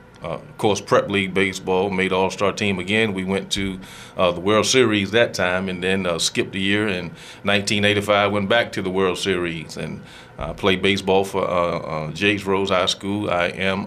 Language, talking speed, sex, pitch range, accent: English, 200 wpm, male, 95-110 Hz, American